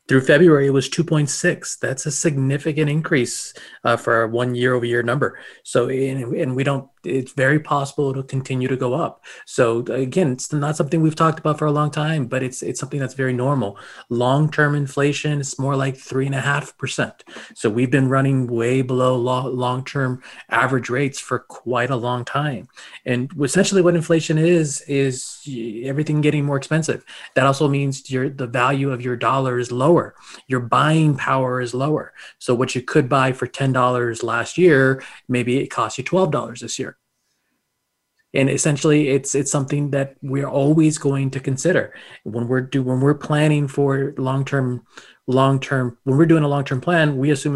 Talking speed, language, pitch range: 175 wpm, English, 125-145 Hz